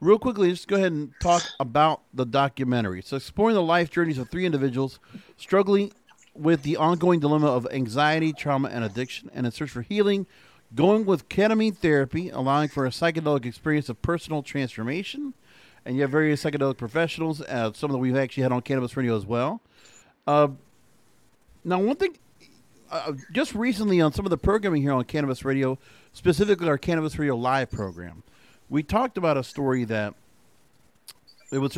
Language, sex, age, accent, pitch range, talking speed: English, male, 40-59, American, 130-175 Hz, 180 wpm